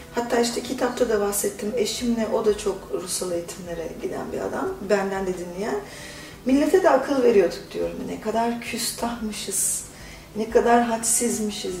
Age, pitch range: 40-59, 215-315 Hz